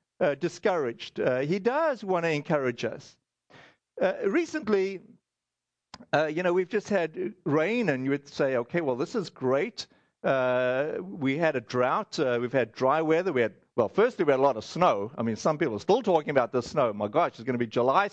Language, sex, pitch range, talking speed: English, male, 155-225 Hz, 210 wpm